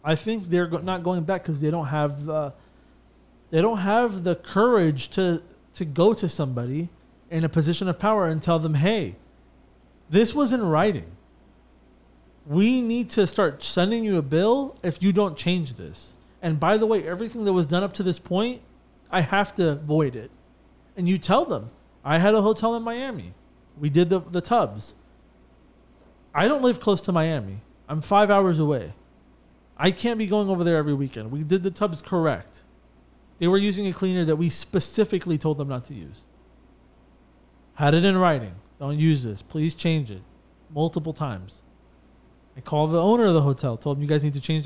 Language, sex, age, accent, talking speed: English, male, 30-49, American, 185 wpm